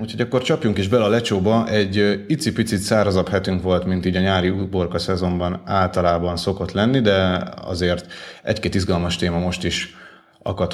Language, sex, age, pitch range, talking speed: Hungarian, male, 30-49, 90-105 Hz, 160 wpm